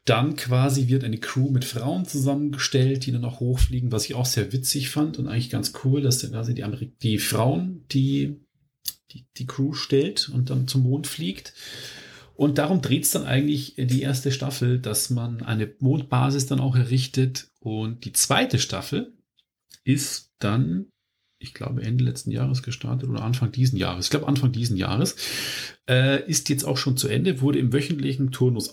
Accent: German